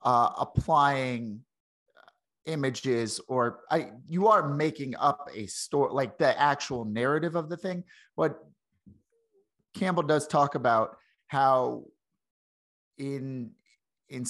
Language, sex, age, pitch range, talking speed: English, male, 30-49, 110-140 Hz, 110 wpm